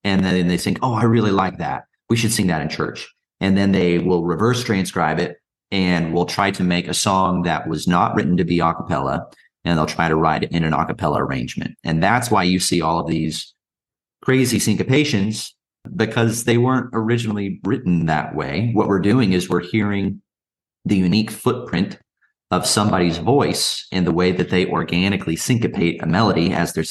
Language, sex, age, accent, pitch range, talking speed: English, male, 30-49, American, 90-110 Hz, 195 wpm